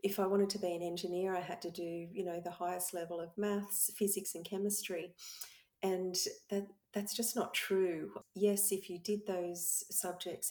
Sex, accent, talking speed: female, Australian, 190 wpm